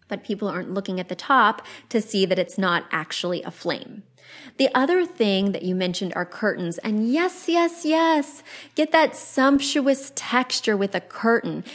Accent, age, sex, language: American, 20-39, female, English